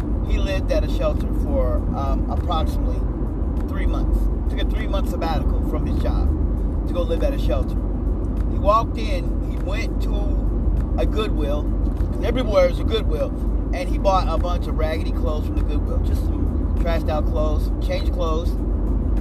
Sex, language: male, English